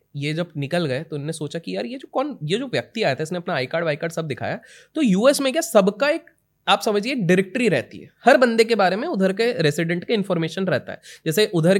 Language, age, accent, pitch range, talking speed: Hindi, 20-39, native, 145-200 Hz, 255 wpm